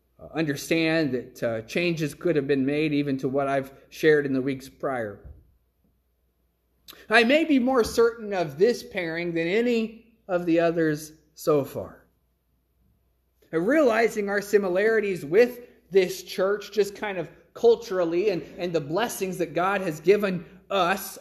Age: 30-49